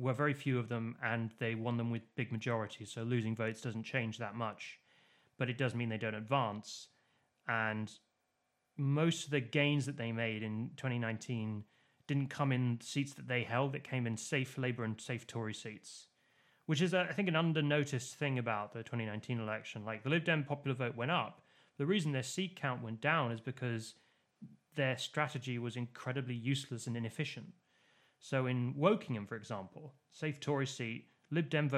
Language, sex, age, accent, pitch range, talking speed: English, male, 30-49, British, 115-150 Hz, 185 wpm